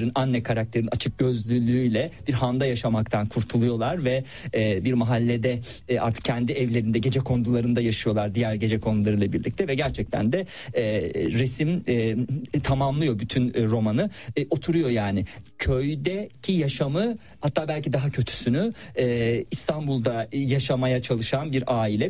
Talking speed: 110 wpm